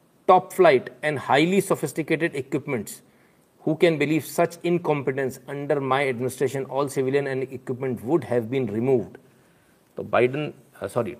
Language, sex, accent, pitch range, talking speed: Hindi, male, native, 130-170 Hz, 140 wpm